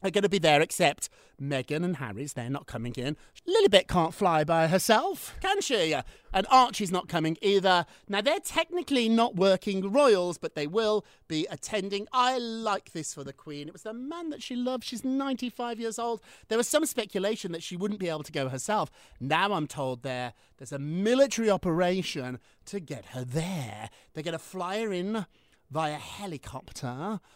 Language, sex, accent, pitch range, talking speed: English, male, British, 135-205 Hz, 190 wpm